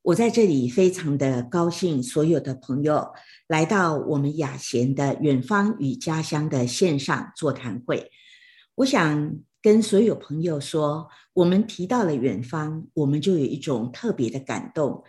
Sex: female